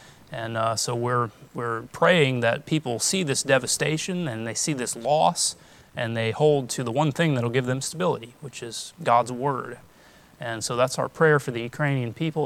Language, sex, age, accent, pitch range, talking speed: English, male, 30-49, American, 120-150 Hz, 195 wpm